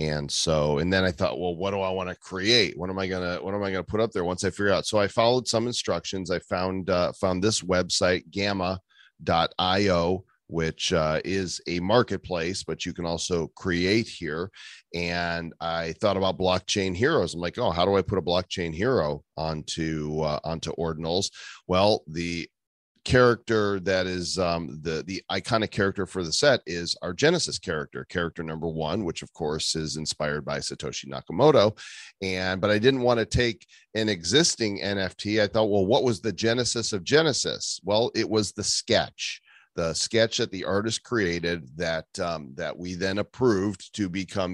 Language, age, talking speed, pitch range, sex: English, 40-59, 185 wpm, 85-105 Hz, male